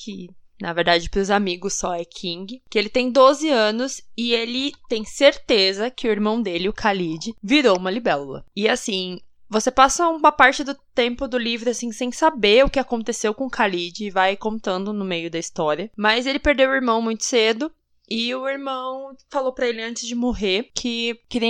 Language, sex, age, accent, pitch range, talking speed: Portuguese, female, 20-39, Brazilian, 195-260 Hz, 195 wpm